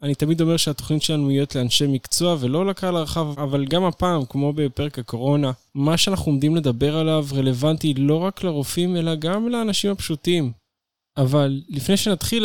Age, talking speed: 20-39, 165 wpm